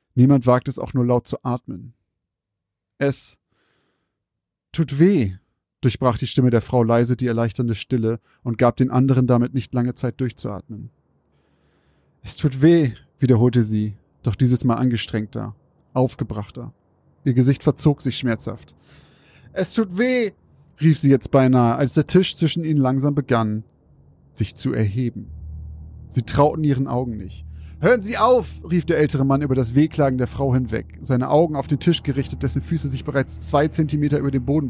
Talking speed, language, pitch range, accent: 165 wpm, German, 115-150 Hz, German